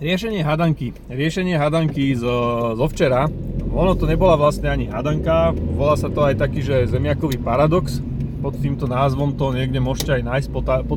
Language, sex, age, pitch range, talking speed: Slovak, male, 30-49, 125-150 Hz, 175 wpm